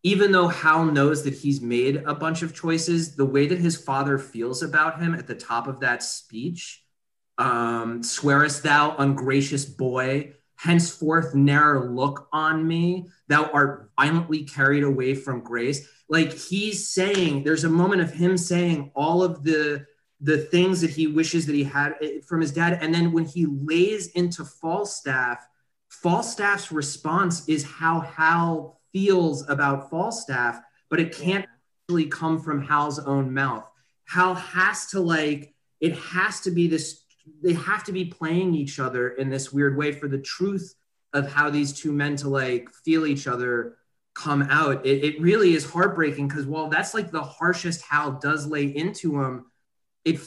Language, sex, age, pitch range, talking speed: English, male, 30-49, 140-170 Hz, 170 wpm